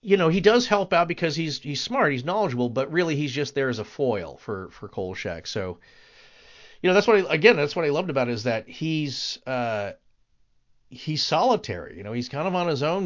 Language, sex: English, male